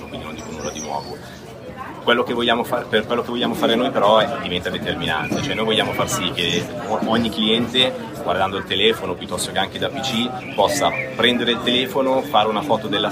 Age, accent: 30-49, native